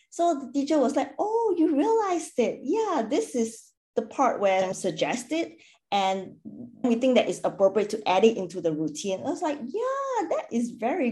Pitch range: 185-270 Hz